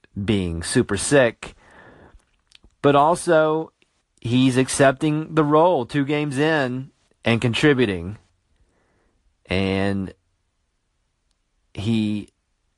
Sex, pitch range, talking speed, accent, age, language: male, 95-135 Hz, 75 wpm, American, 30-49, English